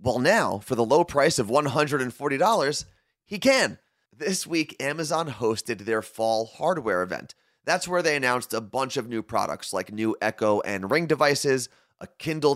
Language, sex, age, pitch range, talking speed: English, male, 30-49, 105-150 Hz, 165 wpm